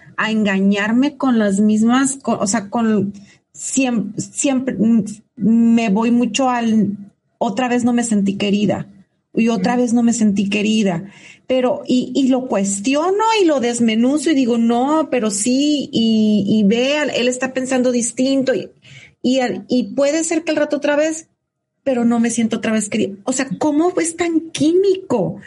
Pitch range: 205-265 Hz